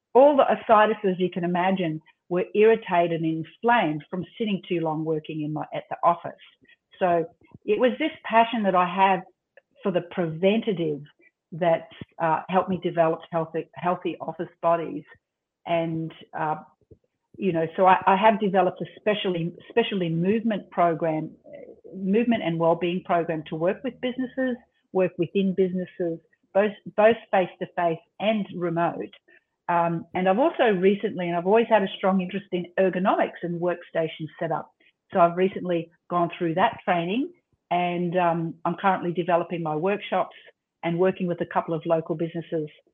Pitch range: 165-195 Hz